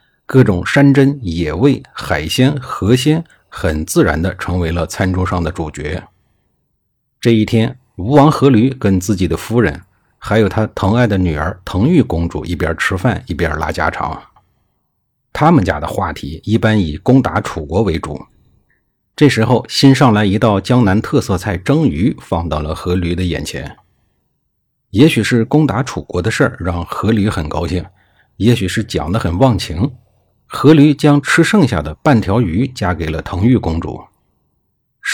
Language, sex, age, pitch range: Chinese, male, 50-69, 90-130 Hz